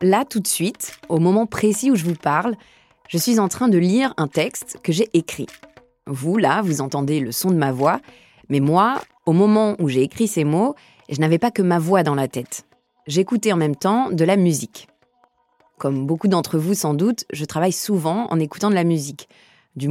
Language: French